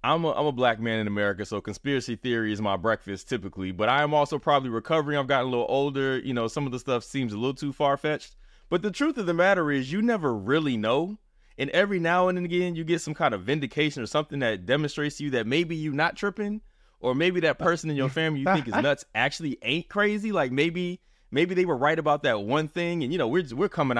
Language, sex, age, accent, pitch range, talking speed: English, male, 20-39, American, 110-160 Hz, 255 wpm